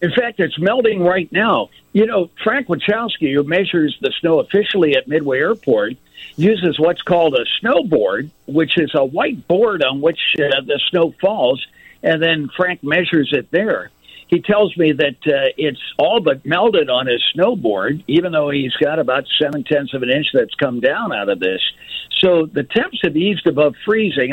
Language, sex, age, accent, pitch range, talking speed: English, male, 60-79, American, 140-195 Hz, 185 wpm